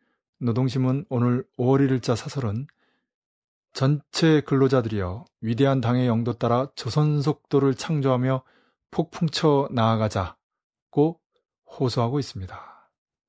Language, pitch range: Korean, 120-145 Hz